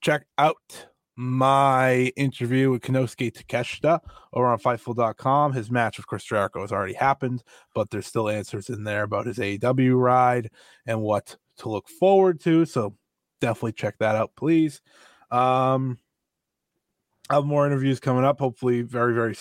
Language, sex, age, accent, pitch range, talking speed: English, male, 20-39, American, 110-135 Hz, 150 wpm